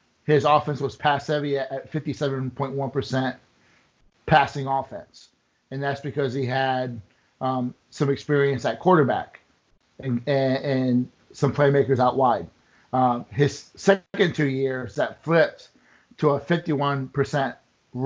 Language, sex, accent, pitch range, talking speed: English, male, American, 130-145 Hz, 115 wpm